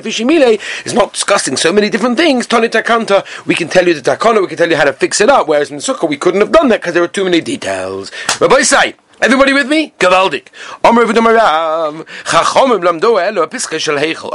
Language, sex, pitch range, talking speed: English, male, 155-225 Hz, 190 wpm